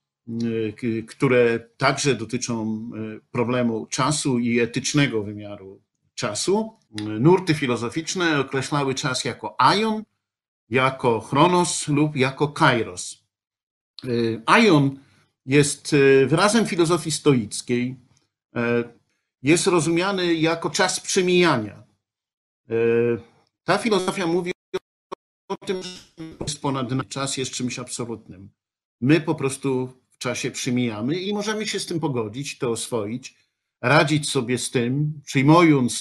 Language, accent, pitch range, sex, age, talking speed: Polish, native, 120-155 Hz, male, 50-69, 100 wpm